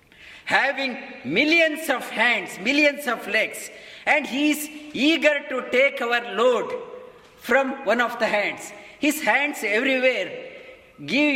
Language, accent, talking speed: English, Indian, 125 wpm